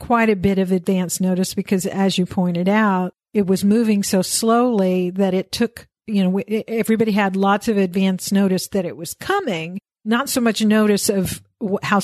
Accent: American